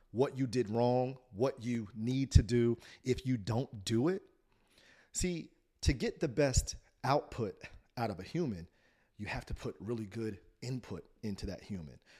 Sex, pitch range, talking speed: male, 100-130 Hz, 165 wpm